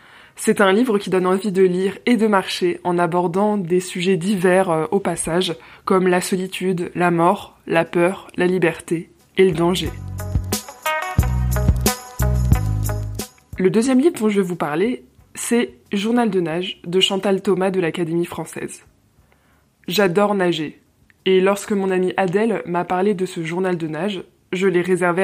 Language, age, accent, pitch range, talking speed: French, 20-39, French, 175-200 Hz, 155 wpm